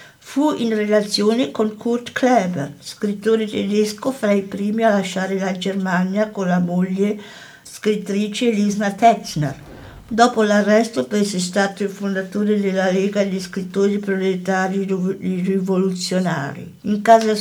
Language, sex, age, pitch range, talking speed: Italian, female, 60-79, 180-210 Hz, 120 wpm